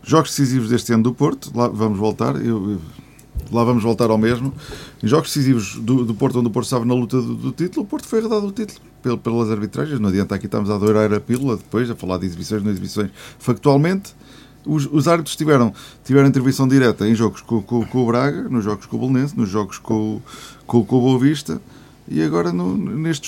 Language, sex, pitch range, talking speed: Portuguese, male, 110-140 Hz, 220 wpm